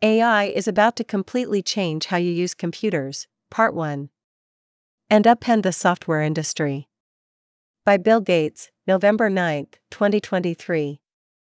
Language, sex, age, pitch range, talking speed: Vietnamese, female, 40-59, 165-205 Hz, 120 wpm